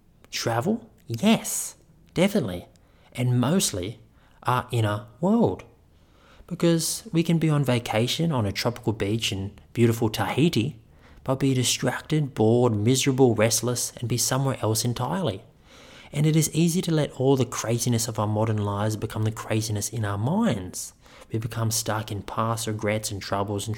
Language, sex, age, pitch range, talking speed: English, male, 30-49, 105-135 Hz, 150 wpm